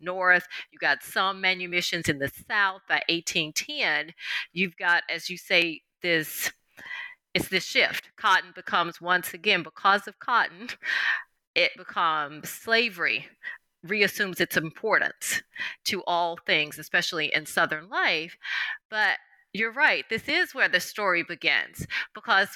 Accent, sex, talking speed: American, female, 130 wpm